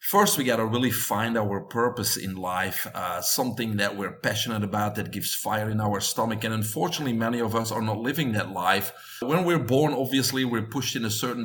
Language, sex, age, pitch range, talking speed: English, male, 40-59, 110-135 Hz, 215 wpm